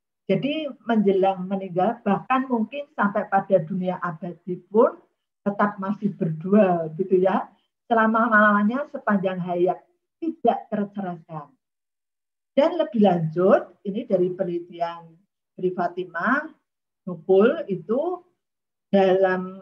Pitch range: 190-225 Hz